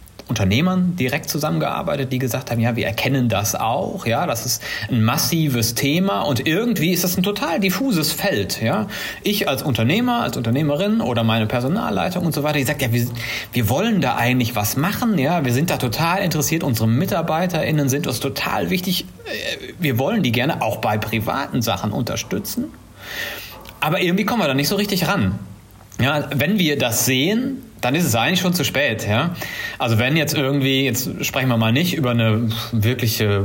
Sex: male